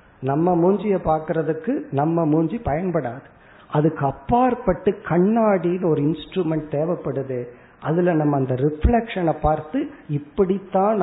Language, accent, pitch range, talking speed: Tamil, native, 145-195 Hz, 100 wpm